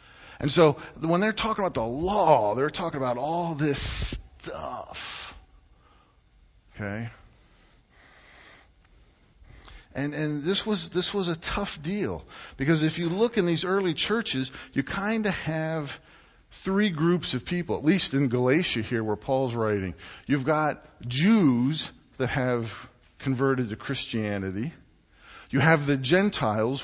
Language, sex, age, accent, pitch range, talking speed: English, male, 50-69, American, 115-165 Hz, 135 wpm